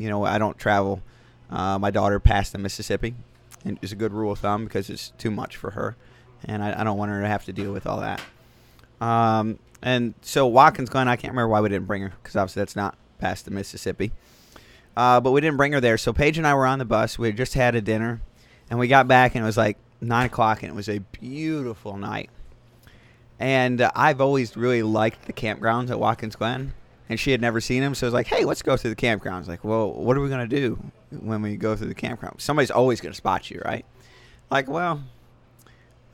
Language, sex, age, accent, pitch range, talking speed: English, male, 30-49, American, 110-130 Hz, 245 wpm